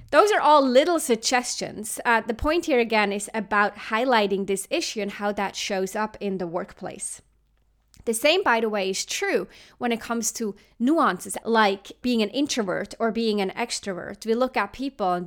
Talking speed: 190 wpm